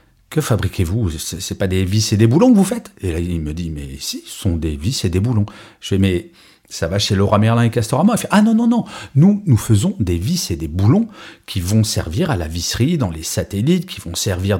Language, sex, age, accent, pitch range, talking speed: French, male, 40-59, French, 95-155 Hz, 255 wpm